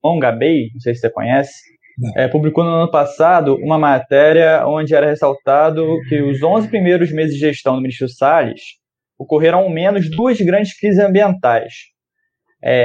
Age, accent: 20-39, Brazilian